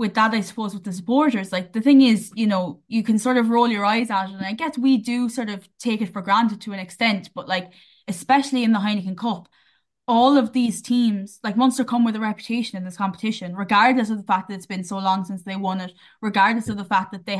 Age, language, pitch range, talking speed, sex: 10-29, English, 190-220 Hz, 260 wpm, female